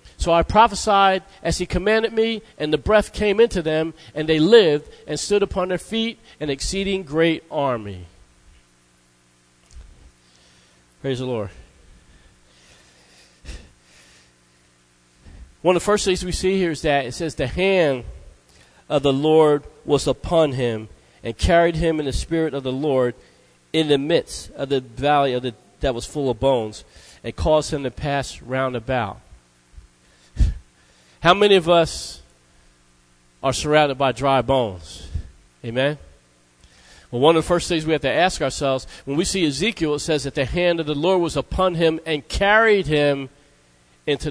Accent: American